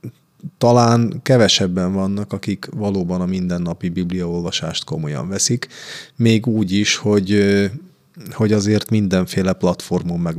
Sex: male